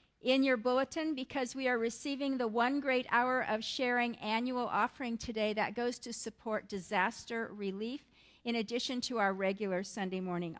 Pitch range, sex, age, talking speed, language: 210-265 Hz, female, 50-69, 165 wpm, English